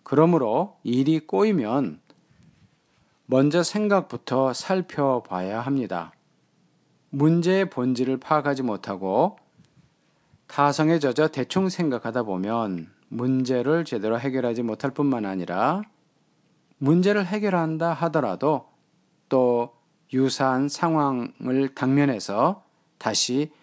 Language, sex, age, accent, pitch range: Korean, male, 40-59, native, 120-160 Hz